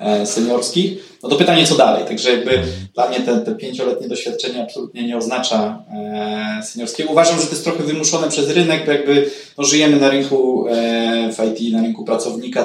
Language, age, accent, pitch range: Polish, 20-39, native, 110-140 Hz